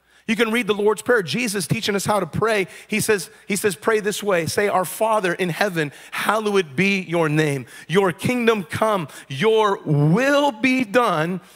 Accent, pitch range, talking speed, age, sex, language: American, 185-245 Hz, 180 wpm, 40-59, male, English